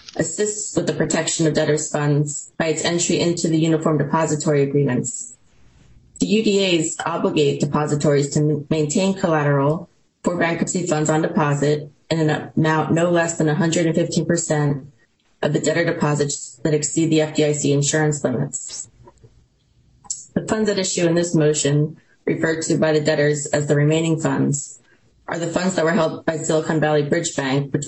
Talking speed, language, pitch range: 155 wpm, English, 150-165 Hz